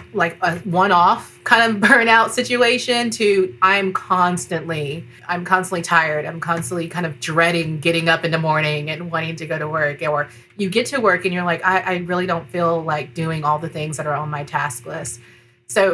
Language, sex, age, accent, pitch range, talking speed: English, female, 30-49, American, 160-185 Hz, 205 wpm